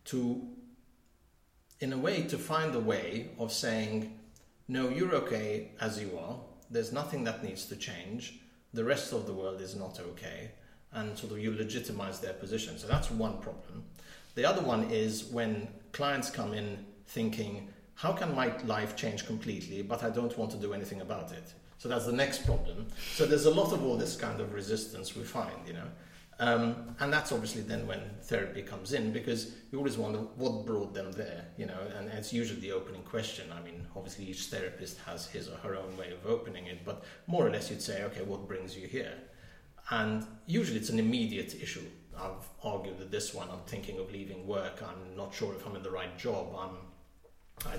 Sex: male